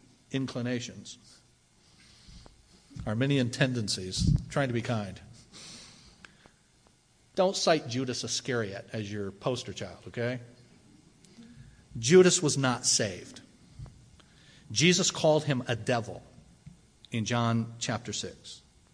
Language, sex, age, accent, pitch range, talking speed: English, male, 40-59, American, 120-170 Hz, 90 wpm